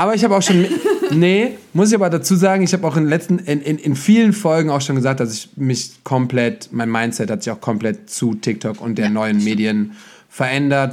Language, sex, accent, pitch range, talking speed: German, male, German, 120-145 Hz, 230 wpm